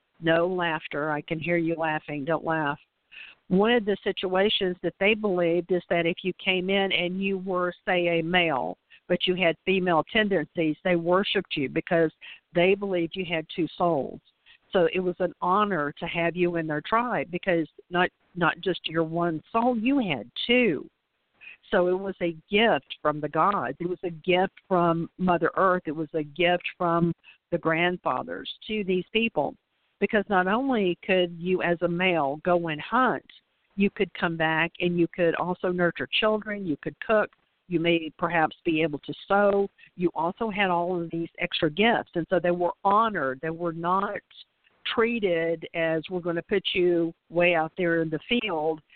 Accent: American